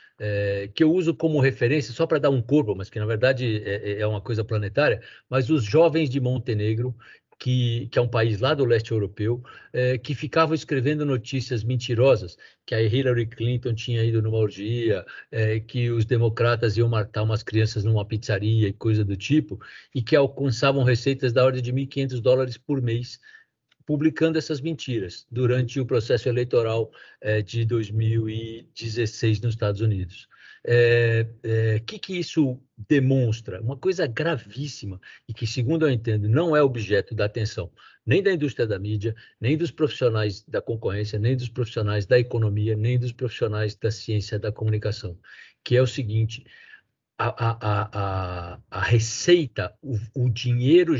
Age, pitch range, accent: 60-79, 110-130 Hz, Brazilian